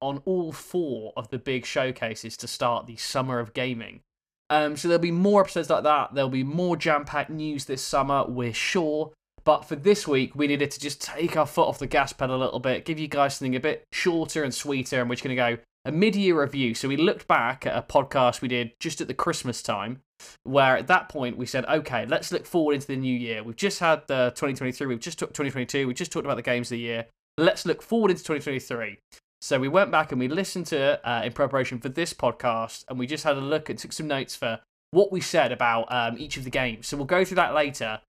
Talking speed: 245 wpm